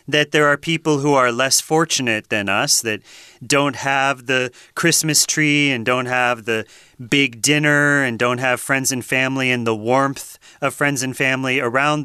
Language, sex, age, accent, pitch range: Chinese, male, 30-49, American, 135-180 Hz